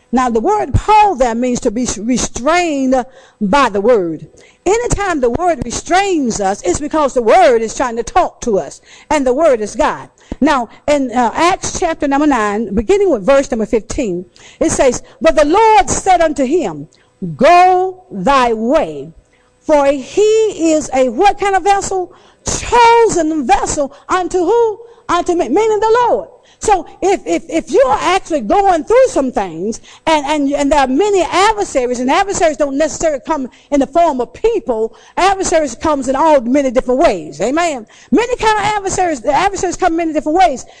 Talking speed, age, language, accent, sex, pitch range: 175 wpm, 50-69, English, American, female, 260-380 Hz